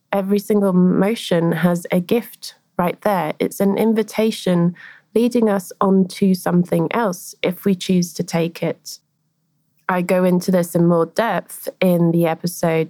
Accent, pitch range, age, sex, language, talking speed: British, 160-190 Hz, 20-39, female, English, 150 wpm